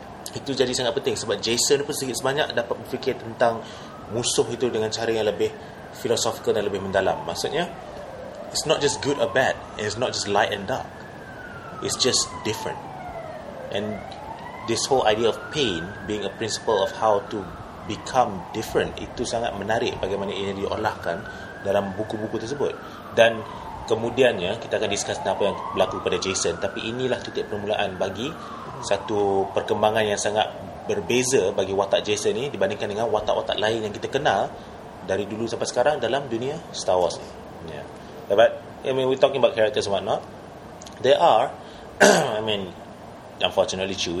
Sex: male